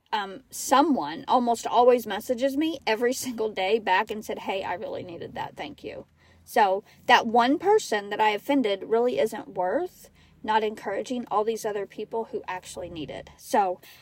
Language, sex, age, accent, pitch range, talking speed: English, female, 40-59, American, 190-245 Hz, 170 wpm